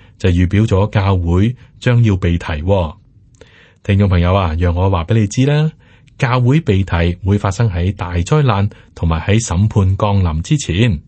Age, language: 30-49, Chinese